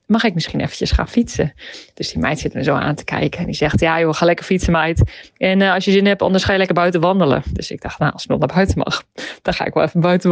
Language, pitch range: Dutch, 160-200 Hz